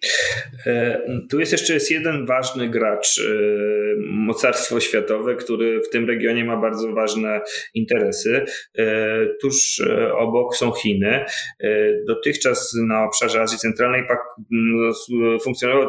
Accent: native